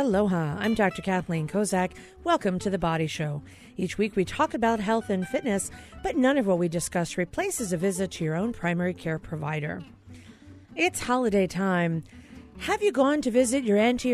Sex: female